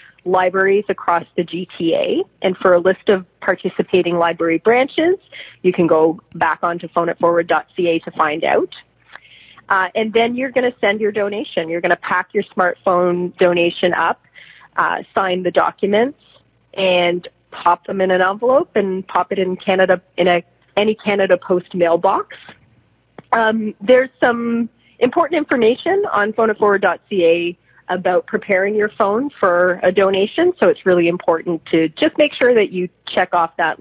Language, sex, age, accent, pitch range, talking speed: English, female, 30-49, American, 170-210 Hz, 155 wpm